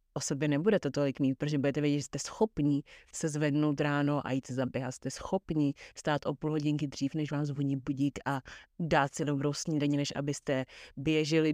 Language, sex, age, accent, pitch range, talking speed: Czech, female, 30-49, native, 140-155 Hz, 200 wpm